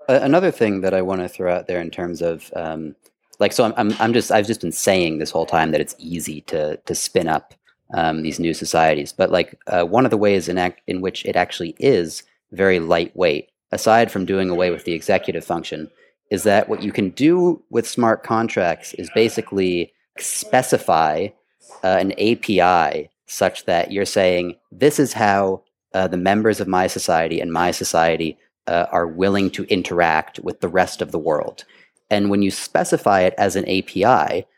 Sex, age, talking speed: male, 30-49, 195 wpm